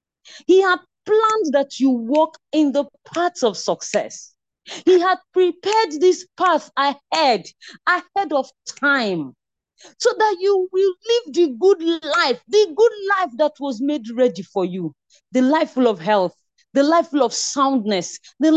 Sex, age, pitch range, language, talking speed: female, 40-59, 210-340 Hz, English, 155 wpm